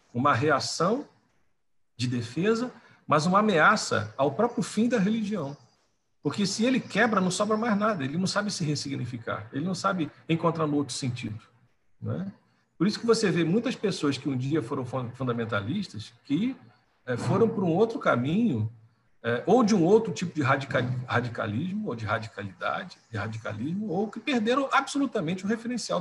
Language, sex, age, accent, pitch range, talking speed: Portuguese, male, 50-69, Brazilian, 115-185 Hz, 155 wpm